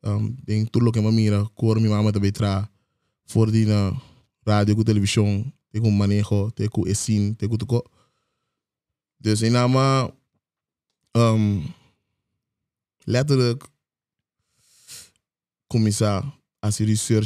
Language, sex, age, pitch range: Portuguese, male, 20-39, 105-115 Hz